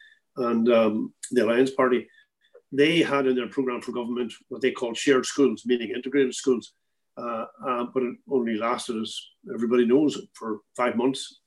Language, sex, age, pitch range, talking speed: English, male, 50-69, 115-140 Hz, 165 wpm